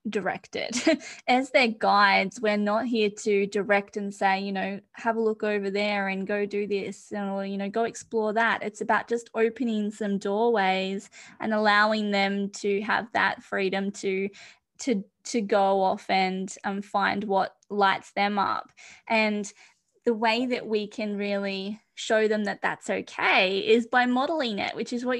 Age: 20-39